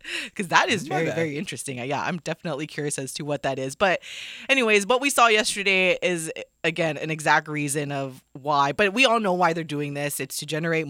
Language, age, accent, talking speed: English, 20-39, American, 215 wpm